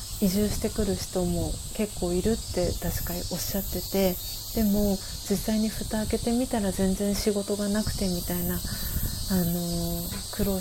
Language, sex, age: Japanese, female, 30-49